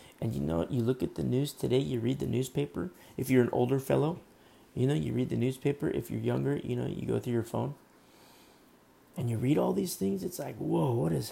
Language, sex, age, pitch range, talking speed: English, male, 30-49, 110-135 Hz, 240 wpm